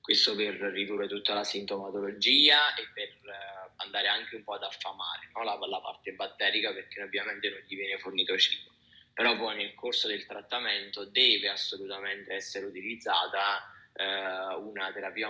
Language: Italian